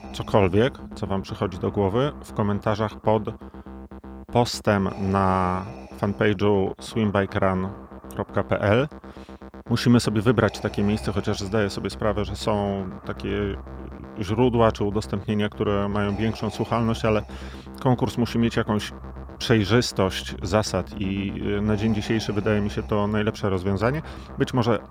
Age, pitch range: 30-49, 90-110 Hz